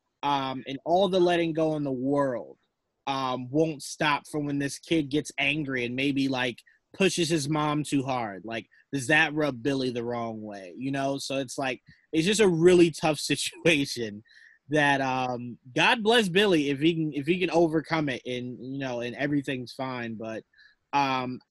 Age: 20-39